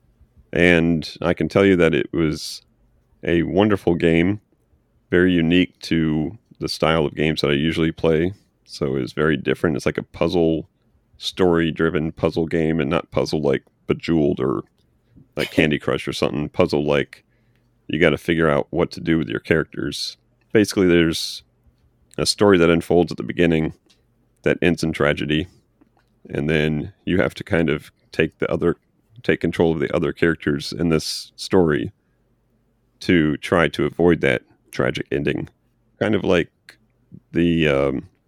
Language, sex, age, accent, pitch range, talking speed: English, male, 40-59, American, 80-95 Hz, 160 wpm